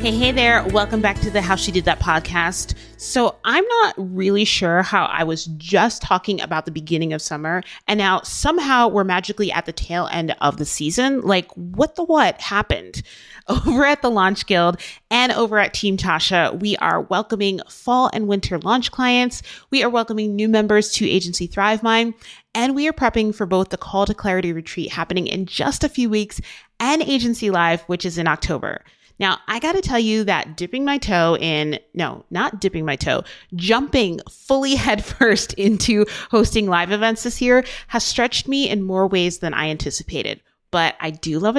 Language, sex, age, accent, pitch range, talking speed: English, female, 30-49, American, 175-235 Hz, 190 wpm